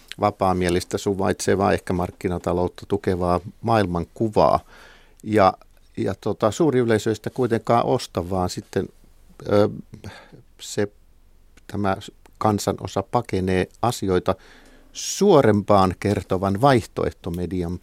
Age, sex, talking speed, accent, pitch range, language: 50-69, male, 80 wpm, native, 95-115 Hz, Finnish